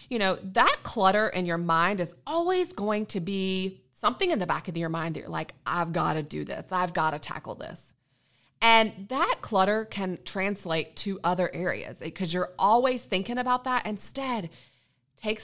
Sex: female